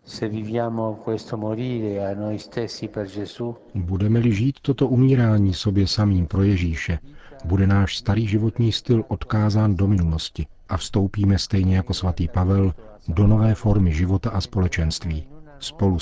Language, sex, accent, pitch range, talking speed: Czech, male, native, 90-105 Hz, 110 wpm